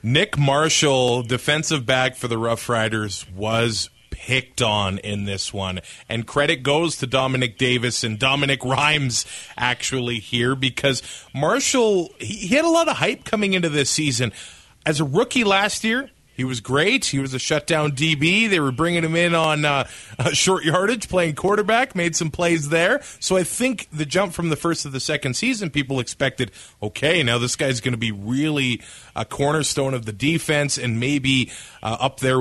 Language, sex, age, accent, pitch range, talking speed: English, male, 30-49, American, 125-175 Hz, 180 wpm